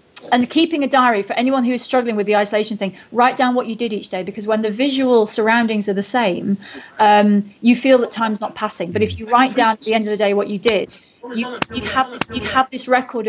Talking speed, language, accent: 255 wpm, English, British